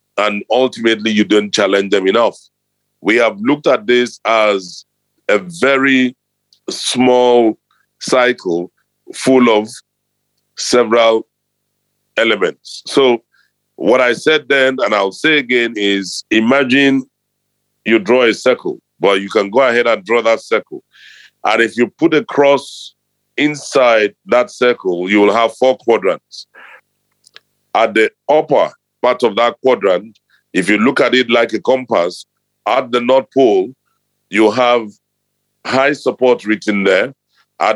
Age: 50-69